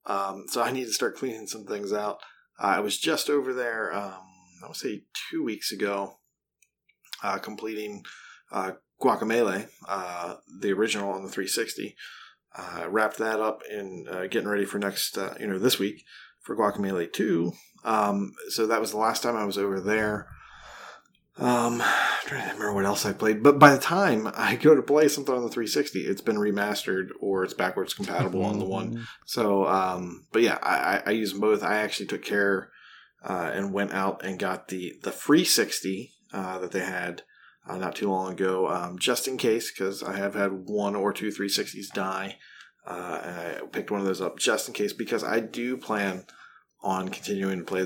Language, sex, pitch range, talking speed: English, male, 95-110 Hz, 195 wpm